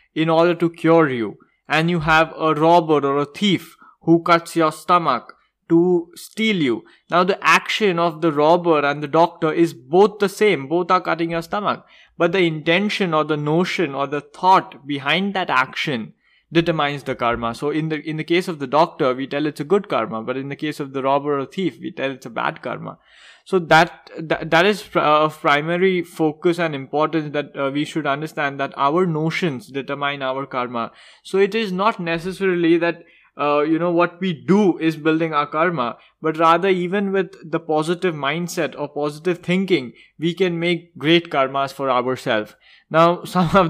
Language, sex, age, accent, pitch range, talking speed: English, male, 20-39, Indian, 140-170 Hz, 190 wpm